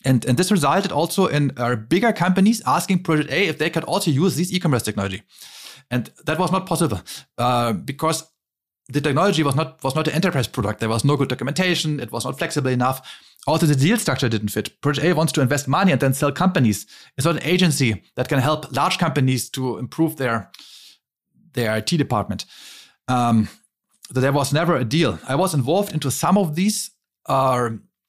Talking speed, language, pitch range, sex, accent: 195 wpm, English, 130-180 Hz, male, German